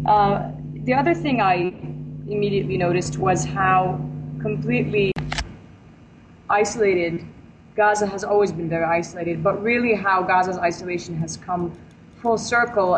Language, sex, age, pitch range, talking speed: English, female, 20-39, 180-205 Hz, 120 wpm